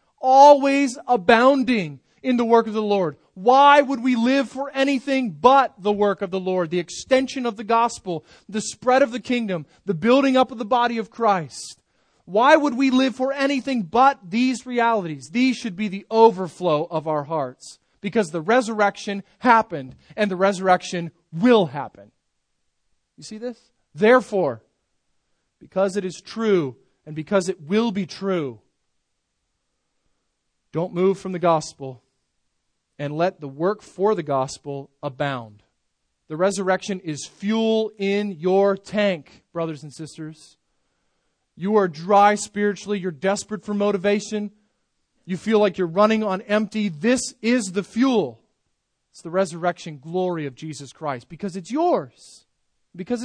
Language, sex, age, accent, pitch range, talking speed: English, male, 30-49, American, 165-235 Hz, 150 wpm